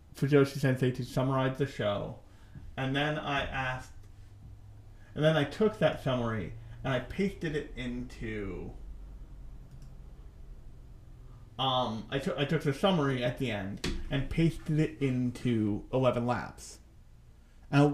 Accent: American